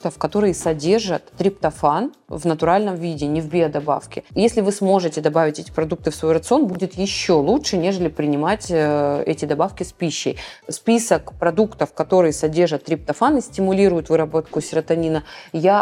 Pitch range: 160-200 Hz